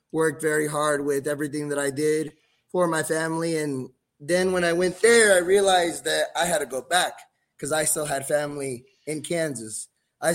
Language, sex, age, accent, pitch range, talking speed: English, male, 20-39, American, 150-180 Hz, 190 wpm